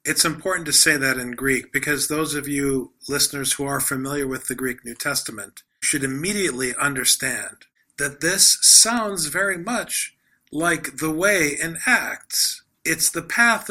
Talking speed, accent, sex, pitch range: 160 wpm, American, male, 135-175 Hz